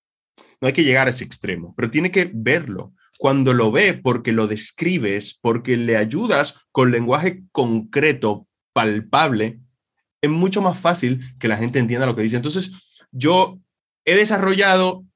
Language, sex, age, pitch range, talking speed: Spanish, male, 30-49, 115-160 Hz, 155 wpm